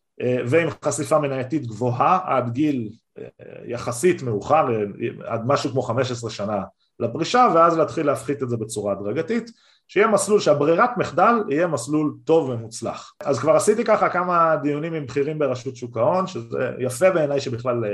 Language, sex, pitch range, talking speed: Hebrew, male, 125-175 Hz, 145 wpm